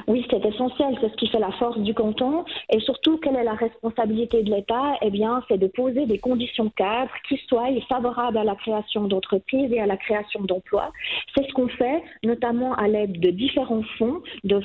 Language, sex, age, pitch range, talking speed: French, female, 40-59, 215-265 Hz, 210 wpm